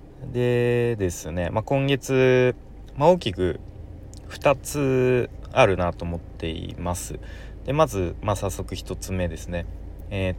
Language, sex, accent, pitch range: Japanese, male, native, 85-115 Hz